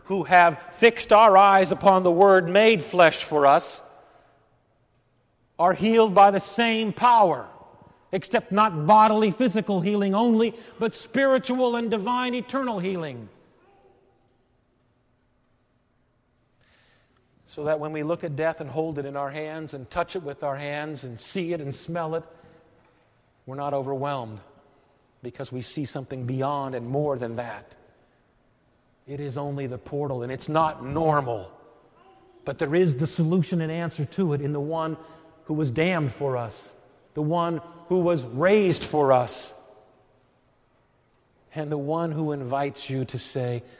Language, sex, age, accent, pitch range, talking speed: English, male, 50-69, American, 130-170 Hz, 150 wpm